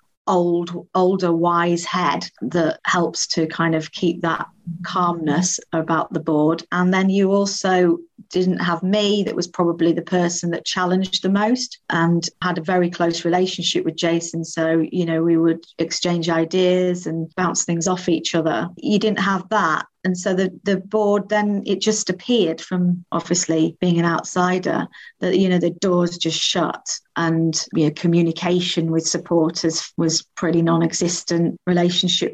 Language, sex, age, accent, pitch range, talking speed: English, female, 40-59, British, 165-185 Hz, 160 wpm